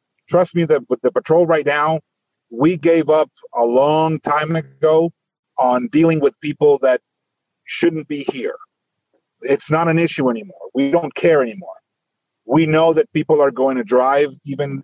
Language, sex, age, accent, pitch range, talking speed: Spanish, male, 50-69, American, 130-175 Hz, 160 wpm